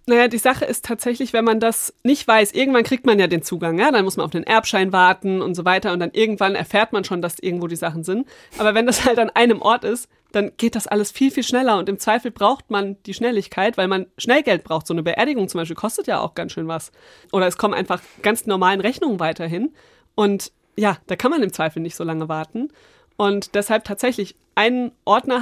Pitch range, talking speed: 195-230 Hz, 235 wpm